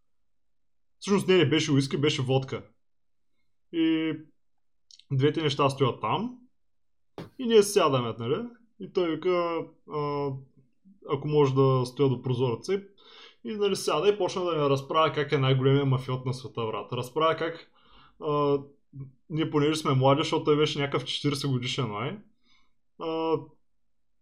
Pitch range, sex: 130-160 Hz, male